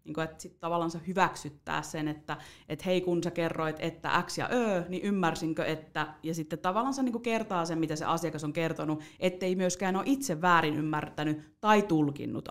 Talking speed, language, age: 180 wpm, Finnish, 30-49